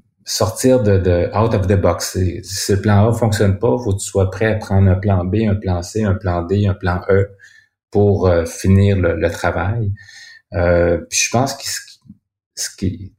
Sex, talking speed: male, 225 wpm